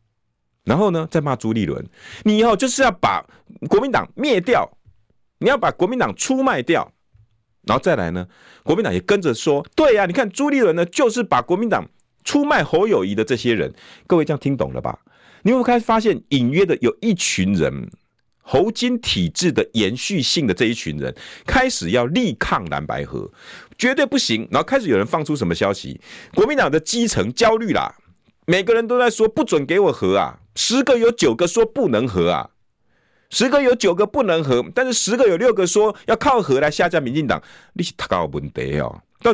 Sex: male